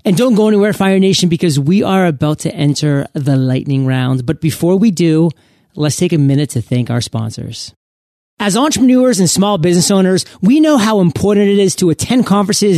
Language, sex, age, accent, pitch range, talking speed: English, male, 30-49, American, 160-210 Hz, 195 wpm